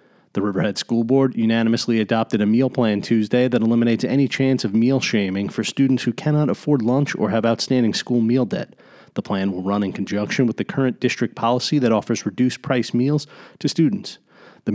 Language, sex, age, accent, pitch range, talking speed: English, male, 30-49, American, 105-130 Hz, 195 wpm